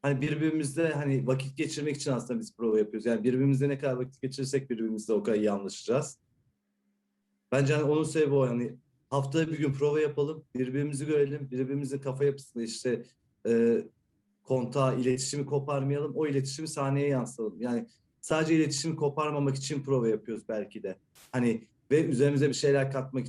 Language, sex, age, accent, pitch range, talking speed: Turkish, male, 40-59, native, 125-145 Hz, 155 wpm